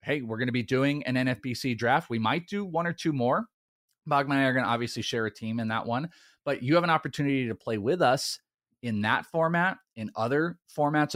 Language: English